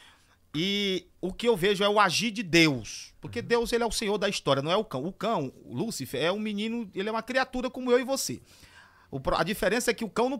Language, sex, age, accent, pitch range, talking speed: Portuguese, male, 40-59, Brazilian, 155-230 Hz, 255 wpm